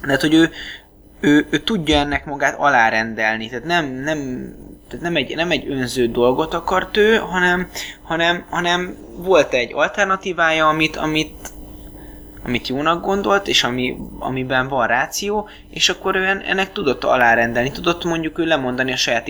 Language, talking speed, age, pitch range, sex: Hungarian, 155 wpm, 20-39, 120-155 Hz, male